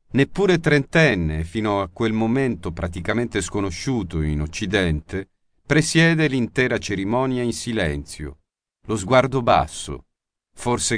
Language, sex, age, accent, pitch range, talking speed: Italian, male, 50-69, native, 95-130 Hz, 105 wpm